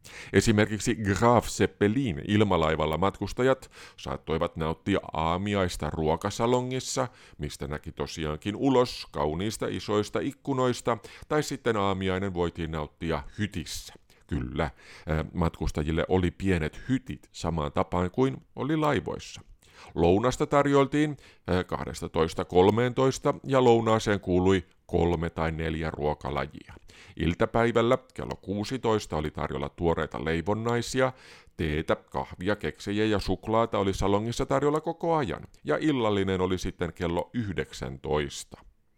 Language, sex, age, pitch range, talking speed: Finnish, male, 50-69, 80-115 Hz, 100 wpm